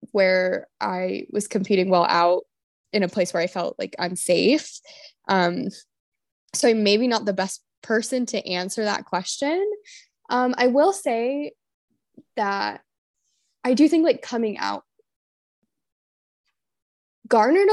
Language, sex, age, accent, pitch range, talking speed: English, female, 10-29, American, 185-265 Hz, 130 wpm